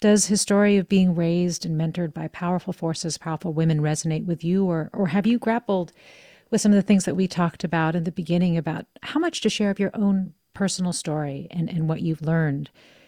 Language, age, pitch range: English, 40-59, 155-190 Hz